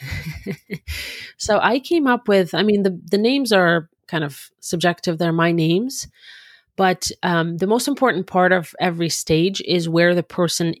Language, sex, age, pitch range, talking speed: English, female, 30-49, 165-195 Hz, 165 wpm